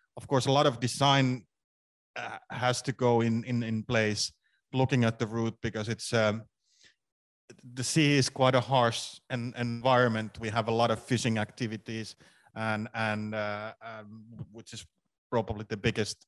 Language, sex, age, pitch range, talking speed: English, male, 30-49, 110-125 Hz, 170 wpm